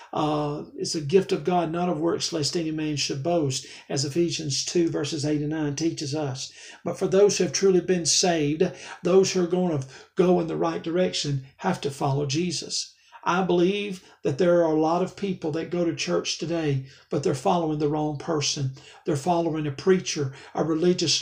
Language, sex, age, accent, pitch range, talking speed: English, male, 50-69, American, 150-190 Hz, 200 wpm